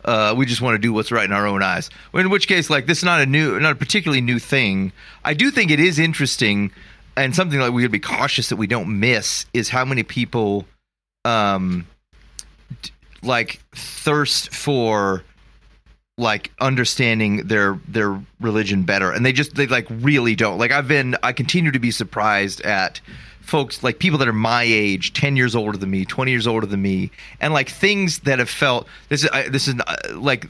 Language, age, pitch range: English, 30-49, 110-140 Hz